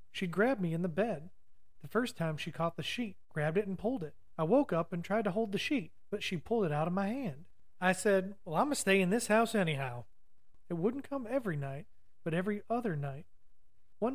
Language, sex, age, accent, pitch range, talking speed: English, male, 40-59, American, 150-215 Hz, 235 wpm